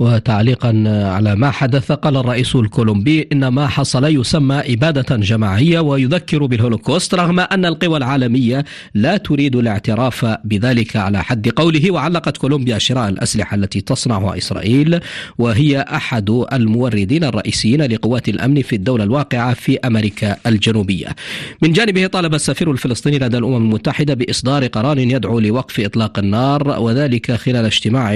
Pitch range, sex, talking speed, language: 115-150 Hz, male, 130 wpm, Arabic